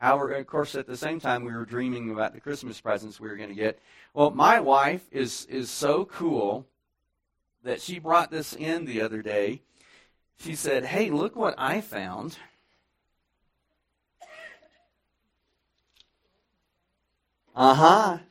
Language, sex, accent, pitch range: English, male, American, 110-165 Hz